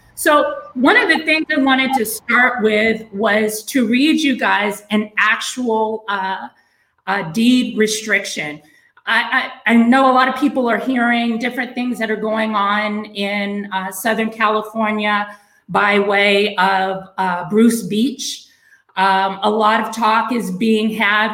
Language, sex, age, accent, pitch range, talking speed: English, female, 30-49, American, 205-240 Hz, 155 wpm